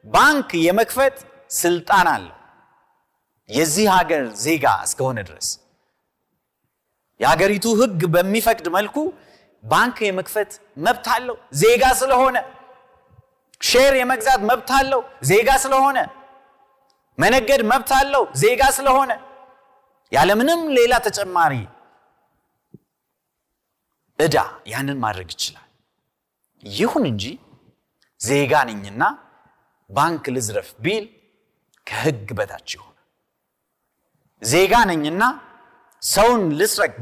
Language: Amharic